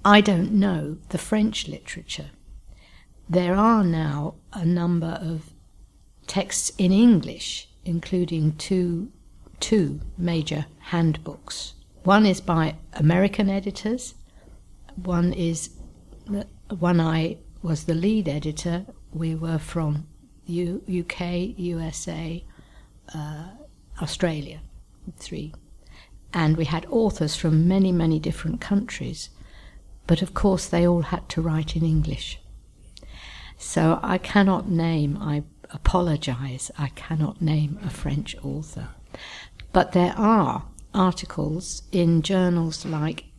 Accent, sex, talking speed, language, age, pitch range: British, female, 110 wpm, French, 60-79, 155-185 Hz